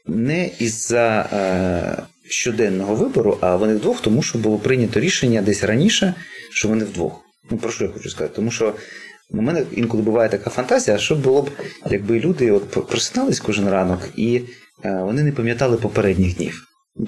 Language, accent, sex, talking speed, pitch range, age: Ukrainian, native, male, 170 wpm, 100-135 Hz, 30-49